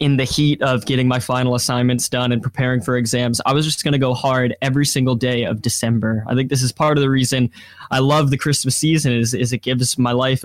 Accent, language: American, English